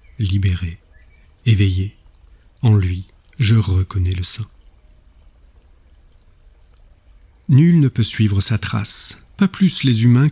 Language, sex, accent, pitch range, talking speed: French, male, French, 80-110 Hz, 105 wpm